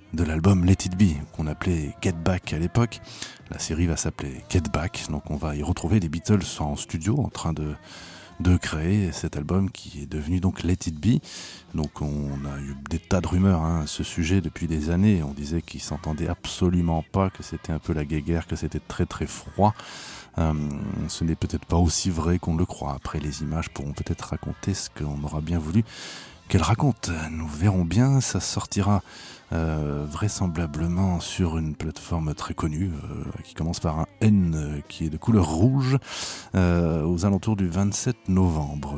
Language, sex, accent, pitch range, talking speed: French, male, French, 80-95 Hz, 195 wpm